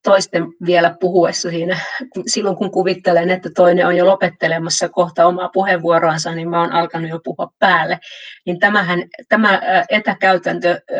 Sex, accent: female, native